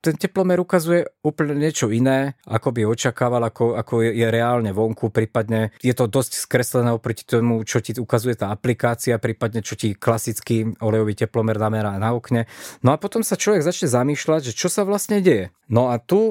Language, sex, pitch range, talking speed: Slovak, male, 110-135 Hz, 190 wpm